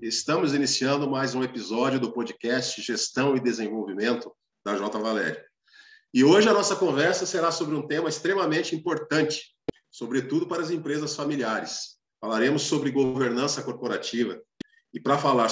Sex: male